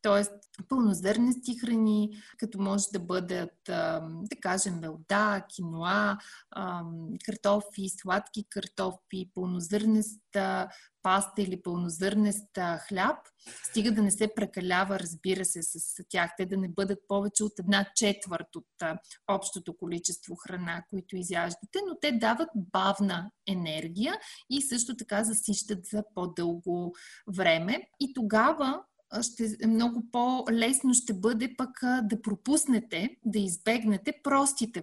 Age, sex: 30-49, female